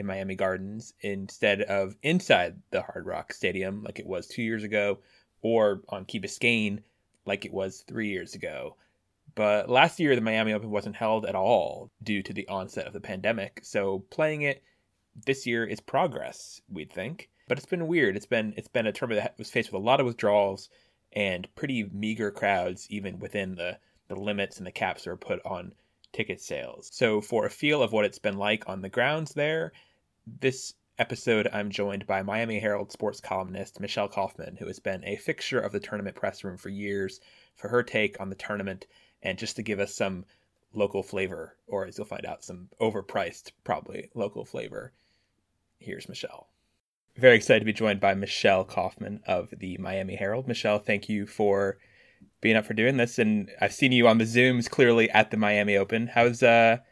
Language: English